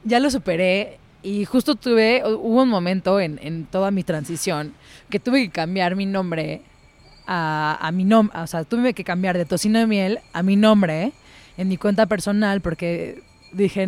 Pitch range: 175-215 Hz